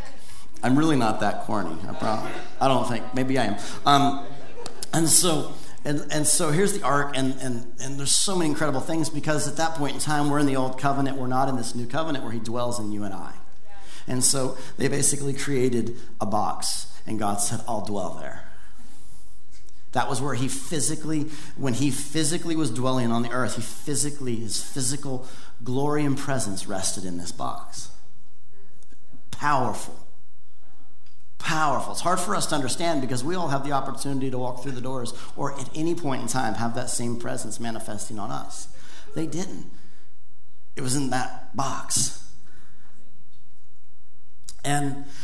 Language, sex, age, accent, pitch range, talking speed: English, male, 40-59, American, 110-140 Hz, 170 wpm